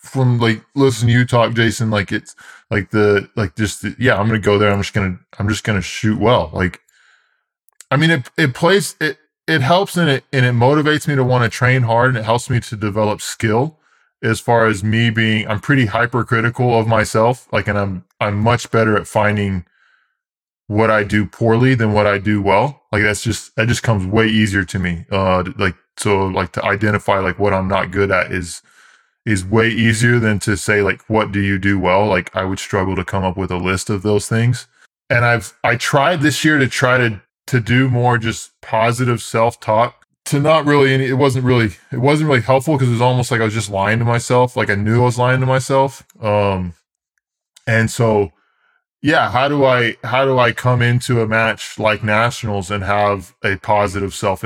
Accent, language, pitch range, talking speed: American, English, 105-125 Hz, 215 wpm